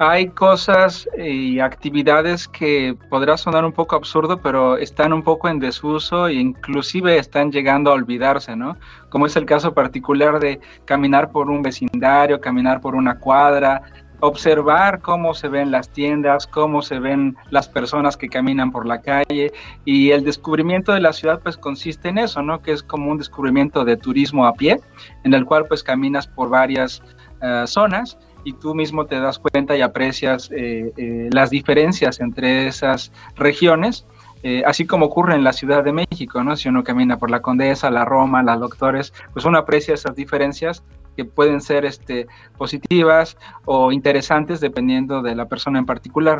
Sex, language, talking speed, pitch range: male, Spanish, 175 wpm, 130-155 Hz